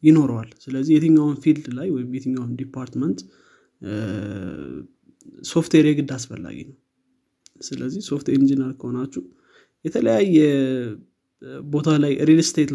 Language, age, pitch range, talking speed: Amharic, 20-39, 135-155 Hz, 100 wpm